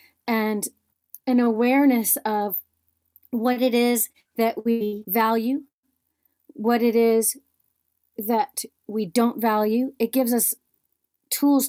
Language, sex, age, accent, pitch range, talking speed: English, female, 40-59, American, 210-265 Hz, 110 wpm